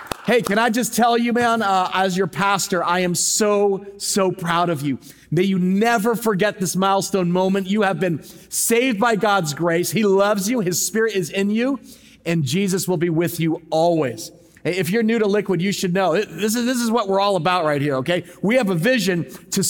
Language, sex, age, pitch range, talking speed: English, male, 40-59, 180-220 Hz, 215 wpm